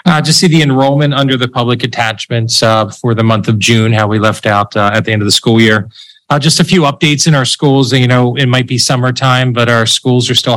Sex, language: male, English